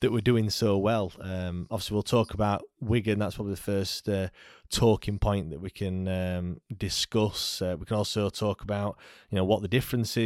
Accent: British